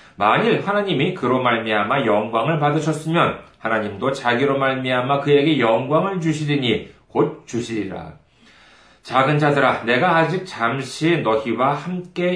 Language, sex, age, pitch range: Korean, male, 40-59, 105-160 Hz